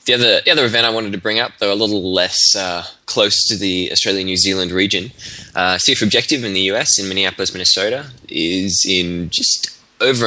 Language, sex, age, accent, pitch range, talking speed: English, male, 10-29, Australian, 85-100 Hz, 205 wpm